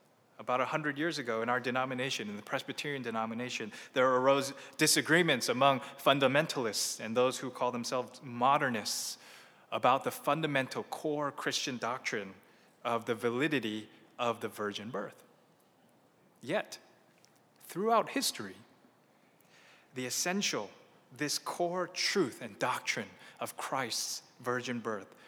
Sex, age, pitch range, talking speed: male, 20-39, 120-155 Hz, 115 wpm